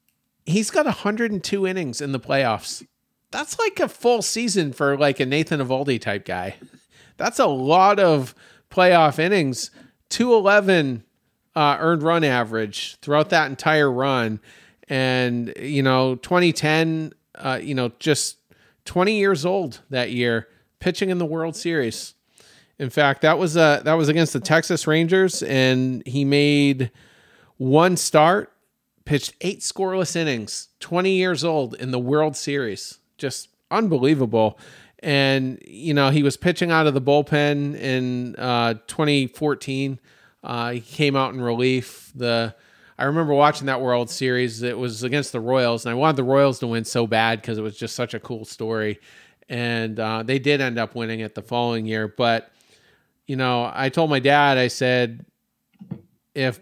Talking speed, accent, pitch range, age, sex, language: 160 wpm, American, 120-155 Hz, 40-59, male, English